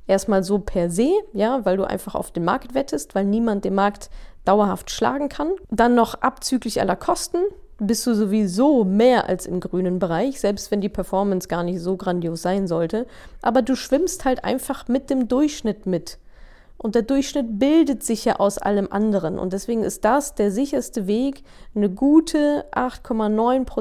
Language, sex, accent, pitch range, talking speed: German, female, German, 195-260 Hz, 180 wpm